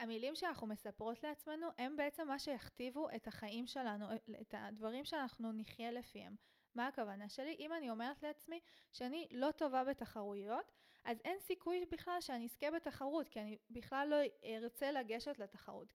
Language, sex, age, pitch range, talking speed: Hebrew, female, 20-39, 220-275 Hz, 155 wpm